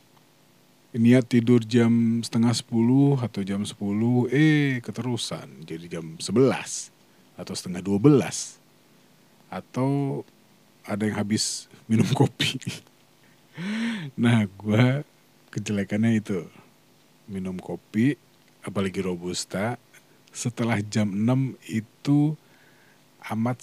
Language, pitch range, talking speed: Indonesian, 100-125 Hz, 90 wpm